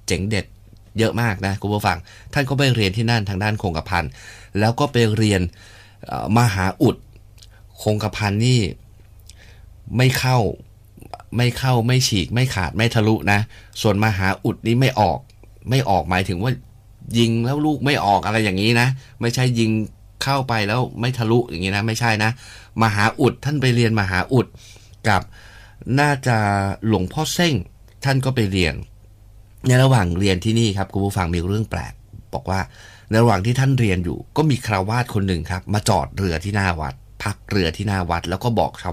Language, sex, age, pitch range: Thai, male, 20-39, 95-115 Hz